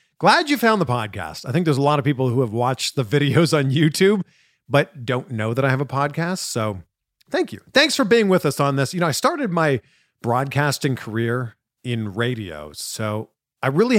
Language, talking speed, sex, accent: English, 210 wpm, male, American